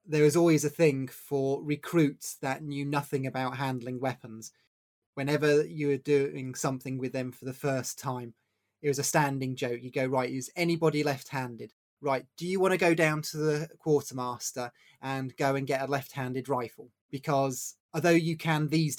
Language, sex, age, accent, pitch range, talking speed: English, male, 30-49, British, 130-150 Hz, 185 wpm